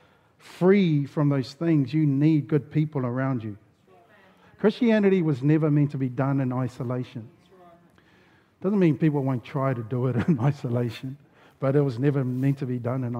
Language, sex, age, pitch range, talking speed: English, male, 50-69, 125-145 Hz, 175 wpm